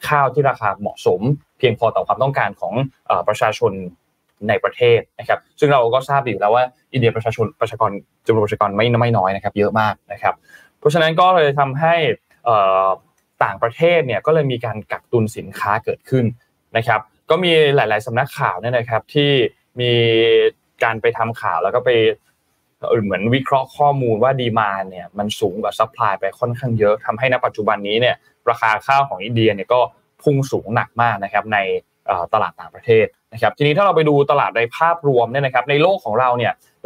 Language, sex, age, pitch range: Thai, male, 20-39, 110-145 Hz